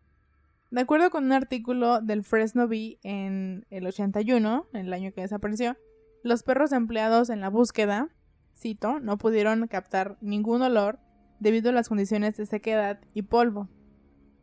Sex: female